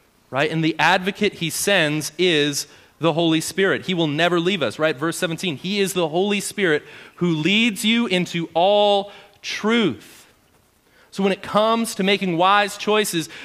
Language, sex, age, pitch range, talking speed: English, male, 30-49, 145-195 Hz, 165 wpm